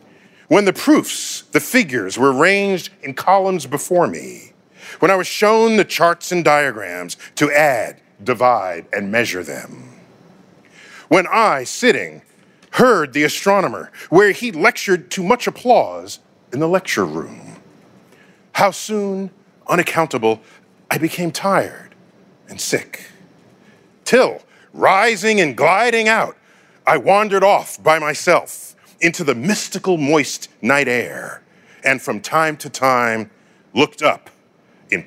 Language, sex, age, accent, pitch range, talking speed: English, male, 40-59, American, 155-205 Hz, 125 wpm